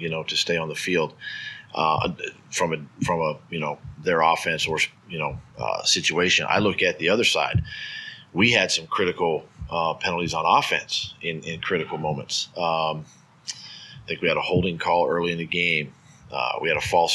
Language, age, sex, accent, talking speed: English, 40-59, male, American, 195 wpm